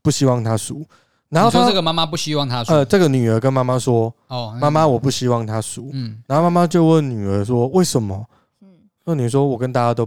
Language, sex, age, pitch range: Chinese, male, 20-39, 110-145 Hz